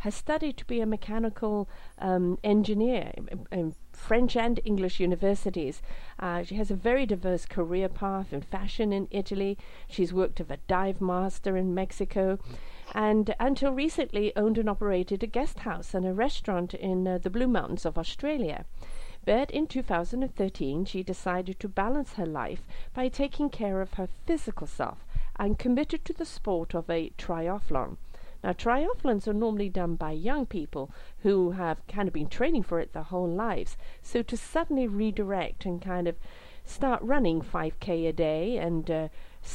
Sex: female